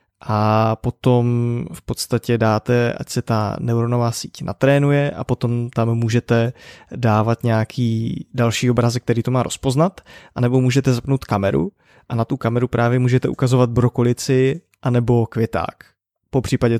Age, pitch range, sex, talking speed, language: 20-39, 115-125 Hz, male, 140 wpm, Czech